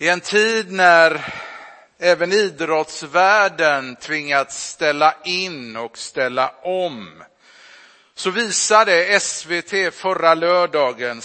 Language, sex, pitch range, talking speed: Swedish, male, 145-190 Hz, 90 wpm